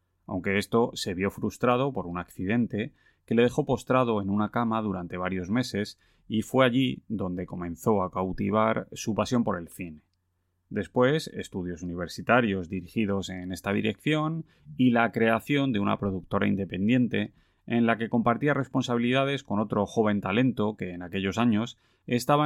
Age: 30-49